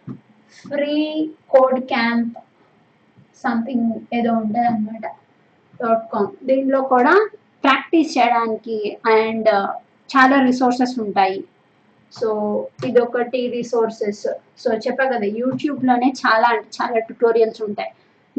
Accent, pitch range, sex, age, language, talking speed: native, 235-285 Hz, female, 20-39, Telugu, 90 wpm